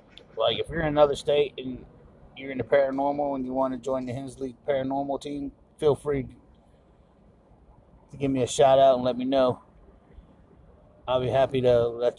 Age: 30-49